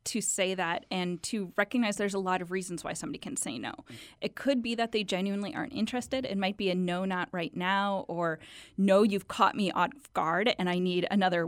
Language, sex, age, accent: English, female, 20-39, American